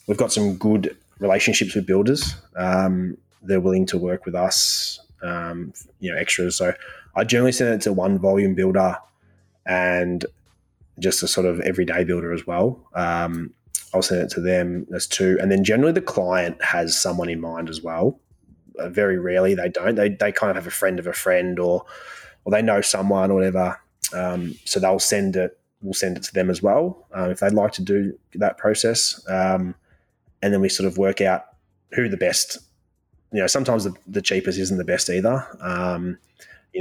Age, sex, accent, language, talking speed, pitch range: 20-39, male, Australian, English, 195 wpm, 90-100 Hz